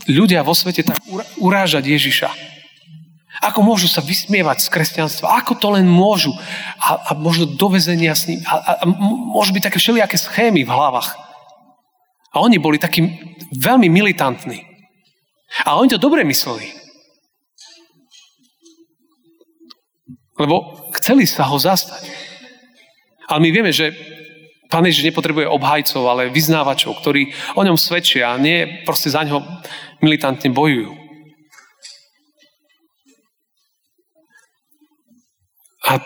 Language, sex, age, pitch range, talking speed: Slovak, male, 40-59, 150-225 Hz, 115 wpm